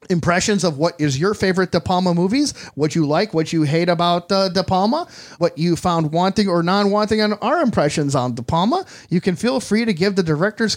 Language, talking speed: English, 215 wpm